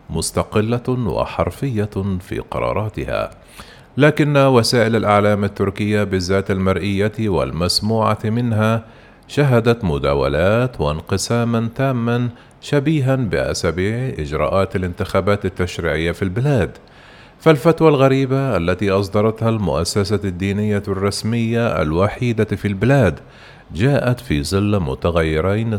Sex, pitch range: male, 95-120 Hz